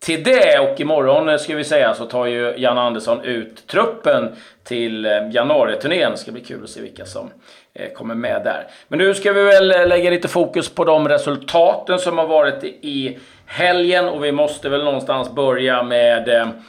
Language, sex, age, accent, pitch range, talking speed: Swedish, male, 30-49, native, 125-160 Hz, 180 wpm